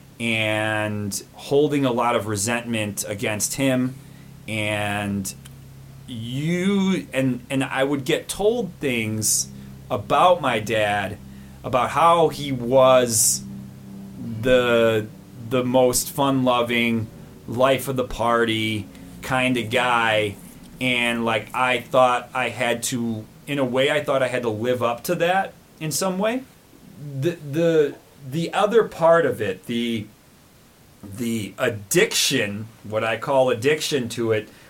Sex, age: male, 30-49